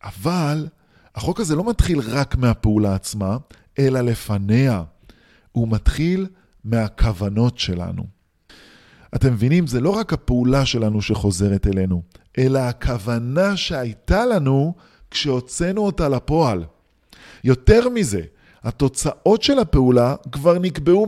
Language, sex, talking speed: Hebrew, male, 105 wpm